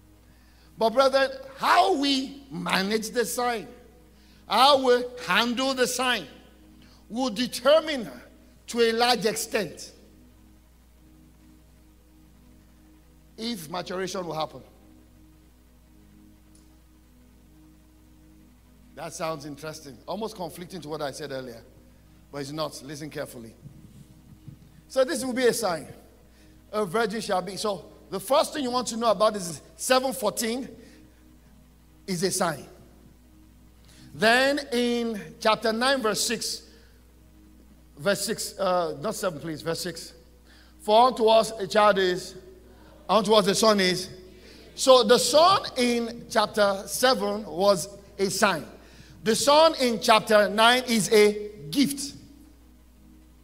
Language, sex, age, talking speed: English, male, 50-69, 115 wpm